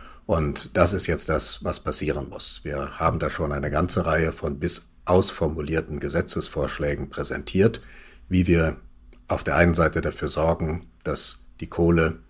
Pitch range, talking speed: 75-95 Hz, 150 wpm